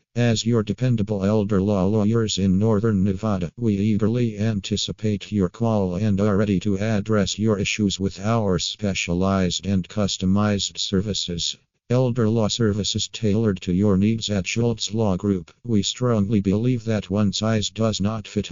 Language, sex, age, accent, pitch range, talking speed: English, male, 50-69, American, 95-110 Hz, 150 wpm